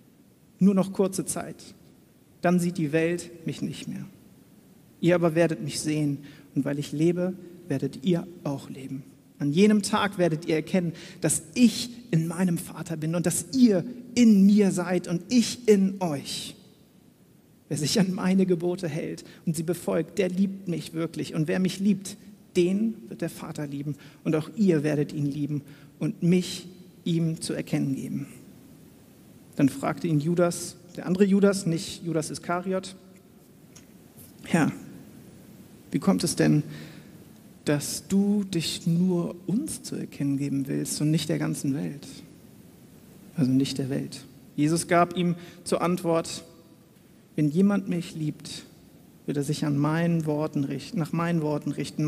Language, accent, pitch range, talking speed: German, German, 150-190 Hz, 155 wpm